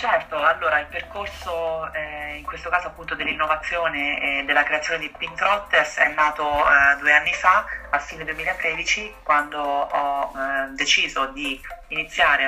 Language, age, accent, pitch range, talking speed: Italian, 30-49, native, 135-160 Hz, 145 wpm